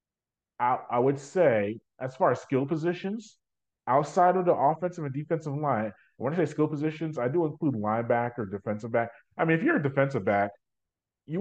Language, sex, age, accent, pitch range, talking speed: English, male, 30-49, American, 110-150 Hz, 180 wpm